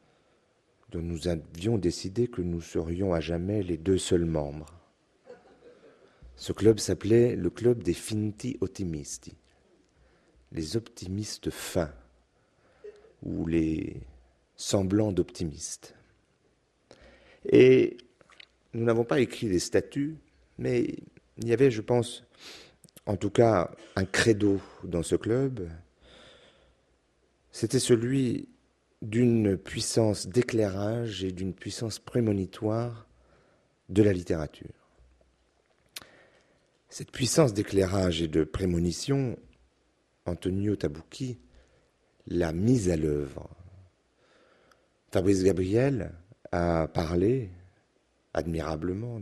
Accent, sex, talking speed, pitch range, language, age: French, male, 95 wpm, 85-115 Hz, French, 40-59